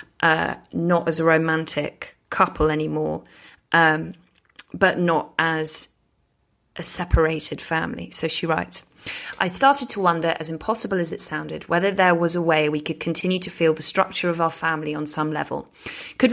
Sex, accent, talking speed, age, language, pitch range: female, British, 165 wpm, 20-39, English, 160-185 Hz